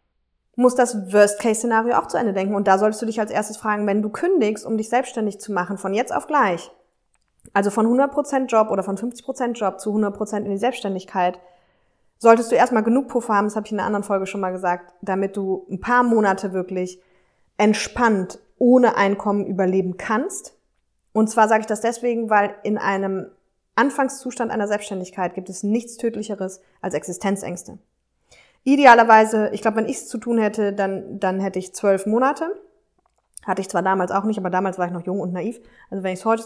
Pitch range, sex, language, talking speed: 190-230 Hz, female, German, 195 wpm